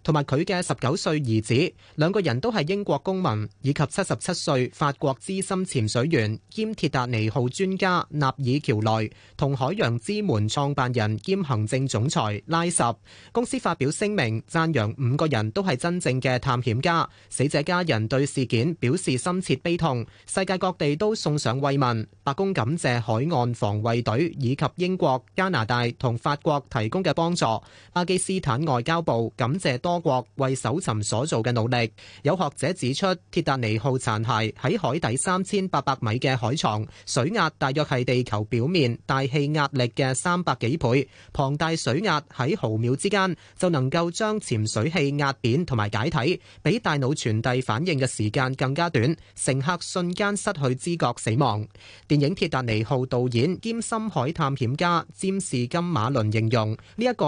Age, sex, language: 30-49, male, Chinese